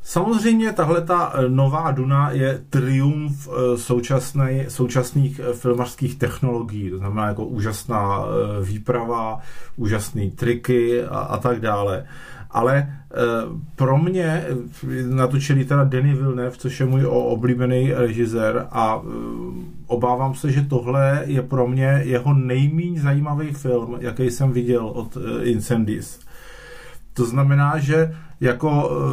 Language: Czech